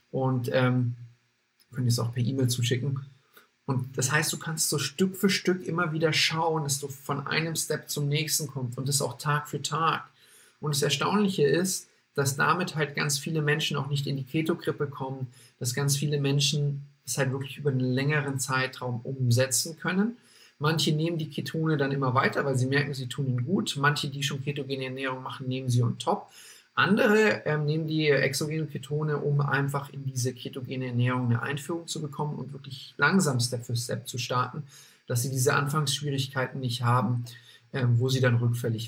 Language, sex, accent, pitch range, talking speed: German, male, German, 130-150 Hz, 190 wpm